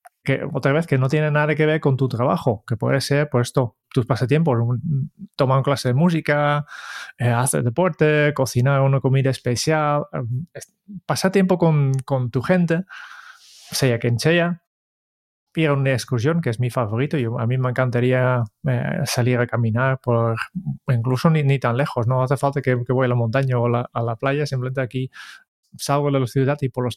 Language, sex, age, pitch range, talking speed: Spanish, male, 20-39, 125-150 Hz, 200 wpm